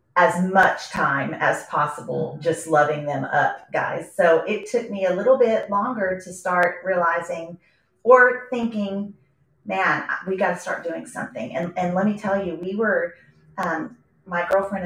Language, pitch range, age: English, 155-190 Hz, 30-49